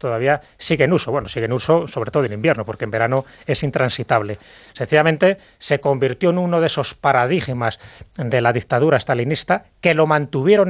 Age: 30-49